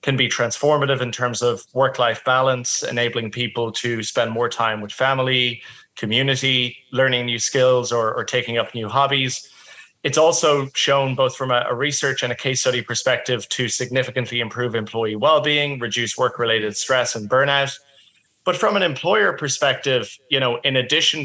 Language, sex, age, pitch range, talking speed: English, male, 30-49, 120-145 Hz, 165 wpm